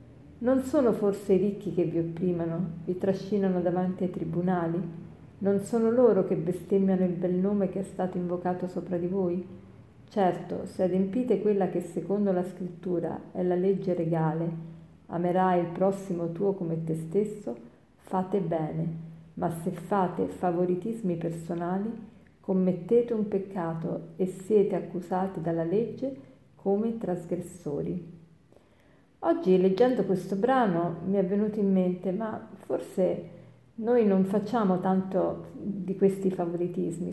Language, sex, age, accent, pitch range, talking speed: Italian, female, 40-59, native, 175-200 Hz, 135 wpm